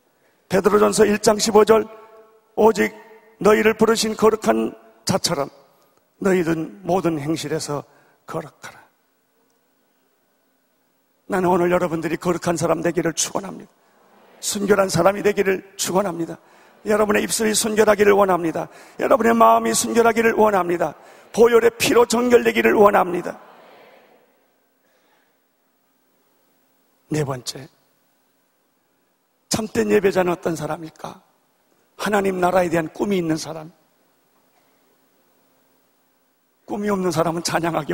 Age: 40-59